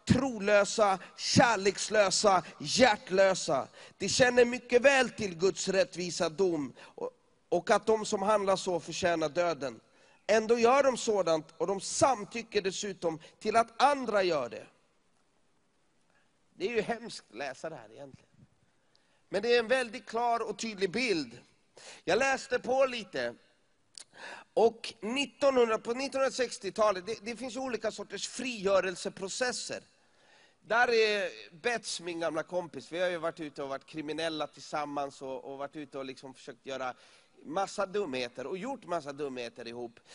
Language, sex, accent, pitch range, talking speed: English, male, Swedish, 165-225 Hz, 140 wpm